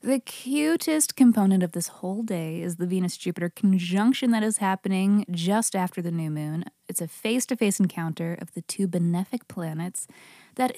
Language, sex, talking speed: English, female, 160 wpm